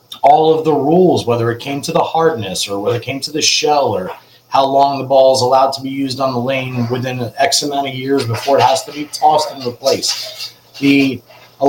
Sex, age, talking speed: male, 30-49, 230 wpm